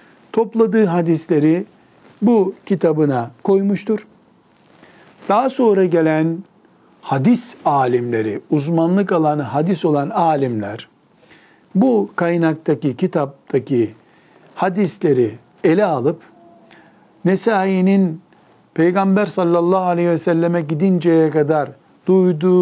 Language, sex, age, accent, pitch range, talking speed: Turkish, male, 60-79, native, 145-185 Hz, 80 wpm